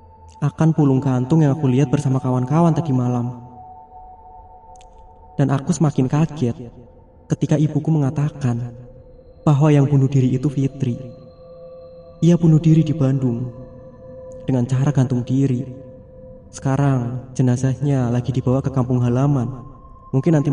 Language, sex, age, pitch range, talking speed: Indonesian, male, 20-39, 125-150 Hz, 120 wpm